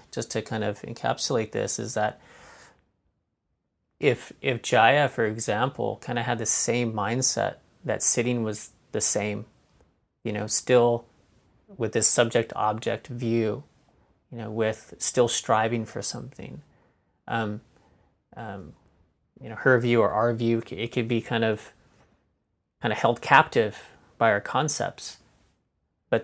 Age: 30-49